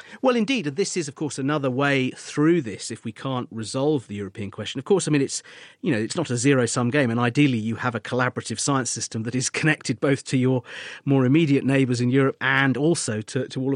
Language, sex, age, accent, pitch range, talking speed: English, male, 40-59, British, 120-145 Hz, 230 wpm